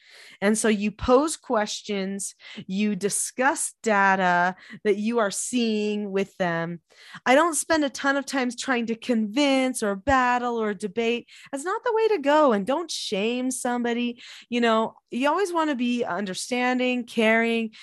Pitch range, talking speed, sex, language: 200-260 Hz, 160 wpm, female, English